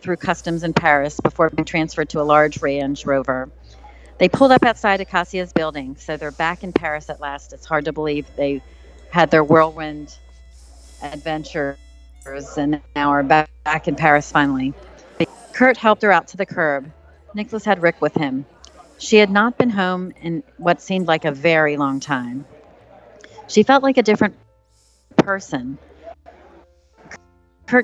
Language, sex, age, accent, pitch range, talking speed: English, female, 40-59, American, 145-185 Hz, 155 wpm